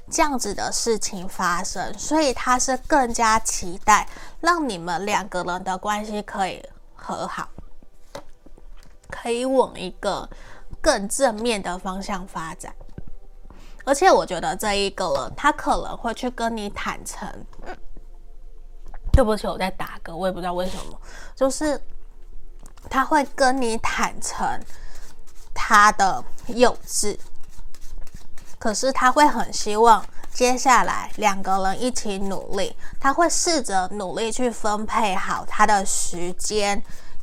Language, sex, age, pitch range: Chinese, female, 20-39, 190-245 Hz